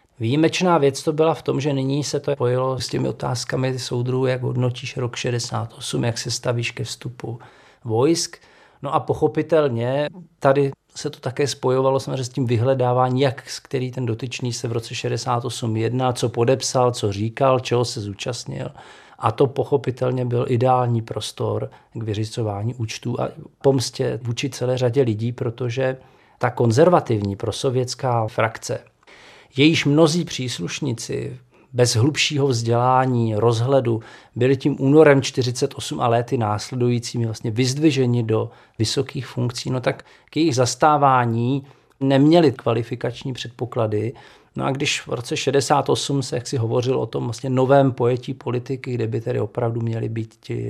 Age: 40-59